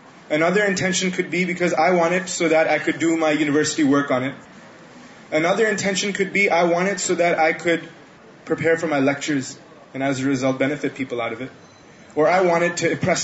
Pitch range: 135-185 Hz